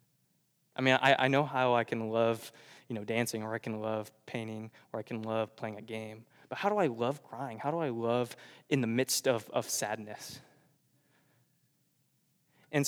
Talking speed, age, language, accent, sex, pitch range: 190 wpm, 20-39, English, American, male, 125-165 Hz